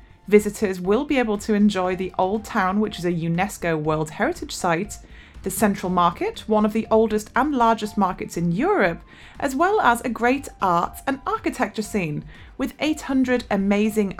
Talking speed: 170 wpm